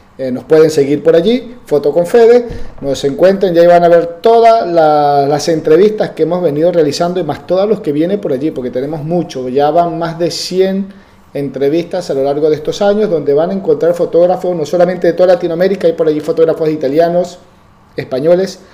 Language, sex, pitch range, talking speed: Spanish, male, 150-195 Hz, 200 wpm